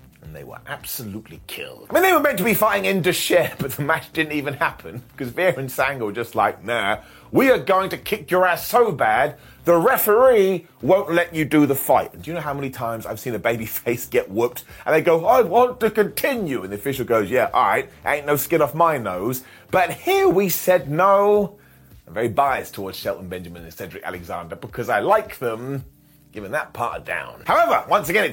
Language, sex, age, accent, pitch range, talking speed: English, male, 30-49, British, 130-190 Hz, 220 wpm